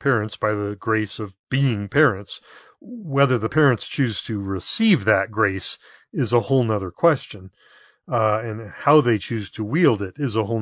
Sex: male